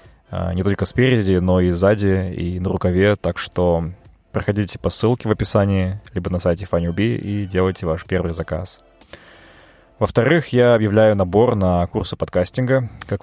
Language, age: Russian, 20-39